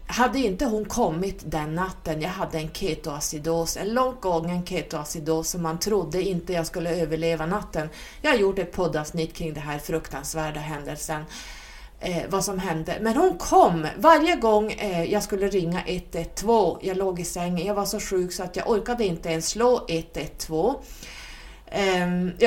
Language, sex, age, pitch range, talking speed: Swedish, female, 30-49, 160-205 Hz, 170 wpm